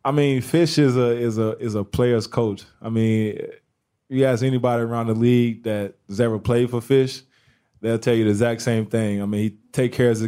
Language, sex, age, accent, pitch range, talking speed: English, male, 20-39, American, 105-120 Hz, 235 wpm